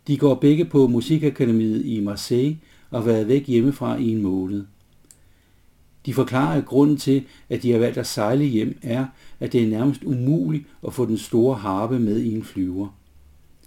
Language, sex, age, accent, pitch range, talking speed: Danish, male, 60-79, native, 105-140 Hz, 185 wpm